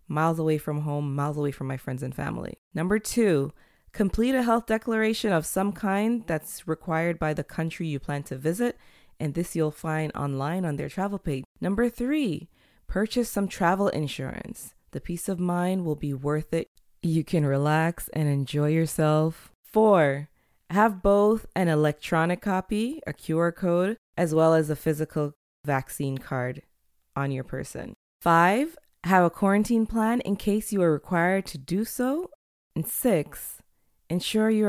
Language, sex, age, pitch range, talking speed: English, female, 20-39, 145-195 Hz, 165 wpm